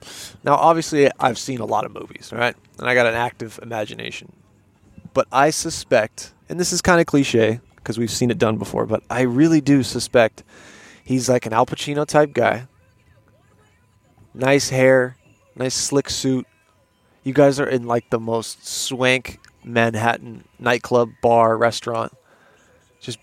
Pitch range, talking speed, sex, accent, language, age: 110-145 Hz, 155 wpm, male, American, English, 20-39